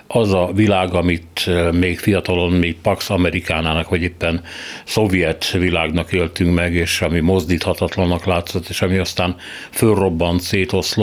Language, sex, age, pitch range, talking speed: Hungarian, male, 60-79, 85-100 Hz, 125 wpm